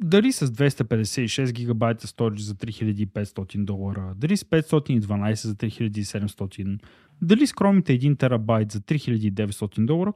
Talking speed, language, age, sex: 120 wpm, Bulgarian, 30-49, male